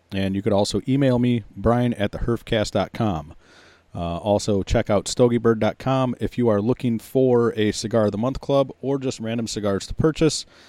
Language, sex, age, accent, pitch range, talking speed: English, male, 30-49, American, 95-125 Hz, 170 wpm